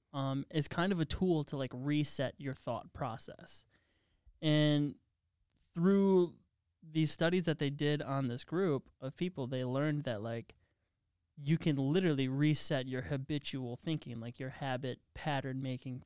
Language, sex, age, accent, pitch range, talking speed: English, male, 20-39, American, 120-155 Hz, 150 wpm